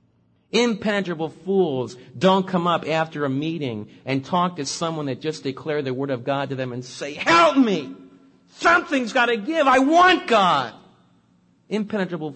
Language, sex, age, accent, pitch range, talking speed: English, male, 50-69, American, 120-160 Hz, 160 wpm